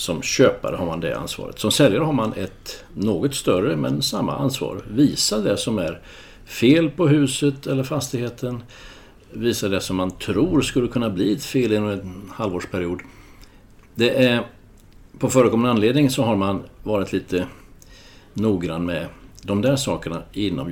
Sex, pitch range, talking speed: male, 95-130 Hz, 155 wpm